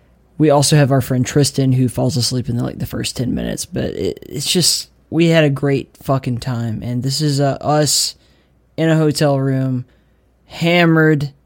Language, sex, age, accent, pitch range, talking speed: English, male, 20-39, American, 120-145 Hz, 190 wpm